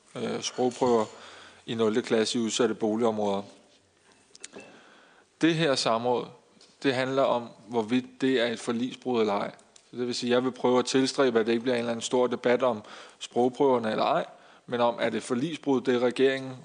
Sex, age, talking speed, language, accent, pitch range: male, 20-39, 185 wpm, Danish, native, 115-135 Hz